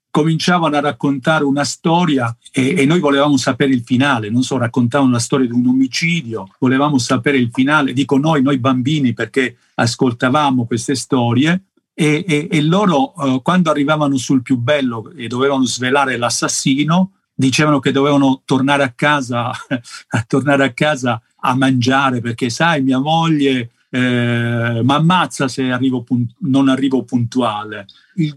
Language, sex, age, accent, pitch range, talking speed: Italian, male, 50-69, native, 120-145 Hz, 150 wpm